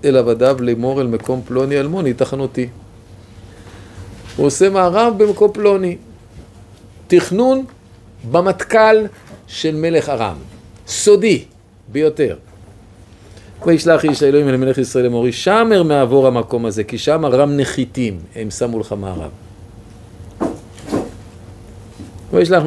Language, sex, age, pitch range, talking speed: Hebrew, male, 50-69, 100-145 Hz, 105 wpm